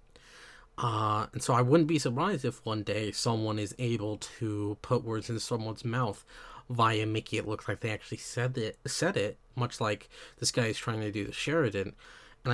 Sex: male